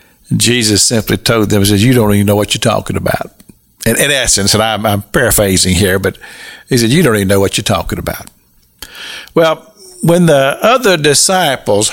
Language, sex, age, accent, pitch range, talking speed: English, male, 50-69, American, 100-135 Hz, 190 wpm